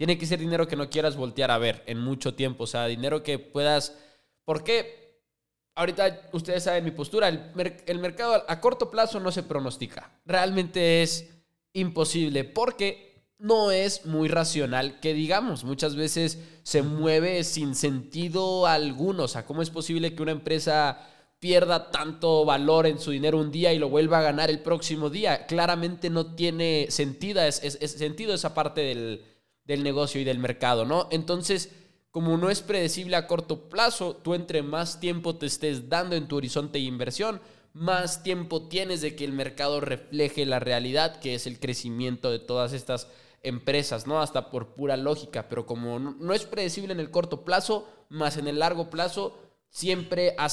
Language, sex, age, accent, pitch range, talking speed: Spanish, male, 20-39, Mexican, 140-175 Hz, 180 wpm